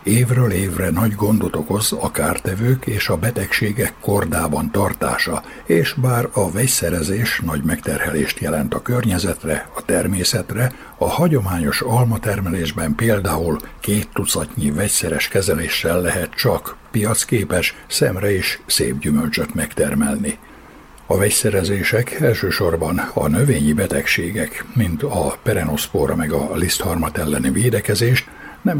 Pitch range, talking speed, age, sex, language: 90-120 Hz, 115 wpm, 60-79, male, Hungarian